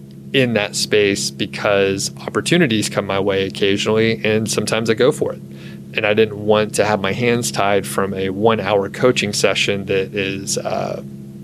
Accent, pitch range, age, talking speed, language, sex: American, 70-110 Hz, 30-49, 175 wpm, English, male